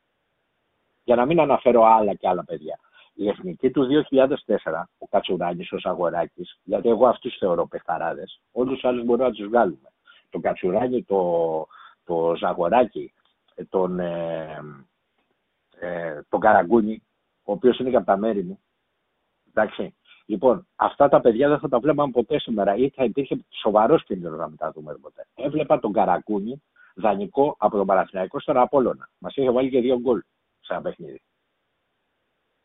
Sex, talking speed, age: male, 145 wpm, 60-79